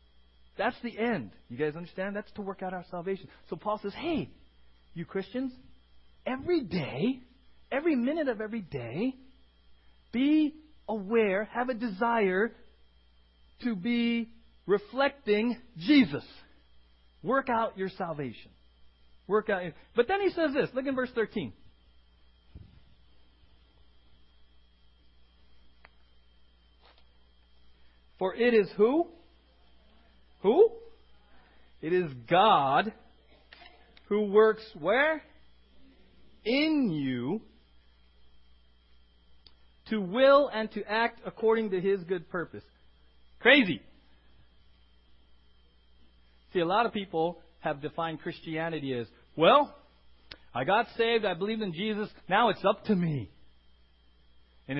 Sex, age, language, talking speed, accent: male, 40-59, English, 105 wpm, American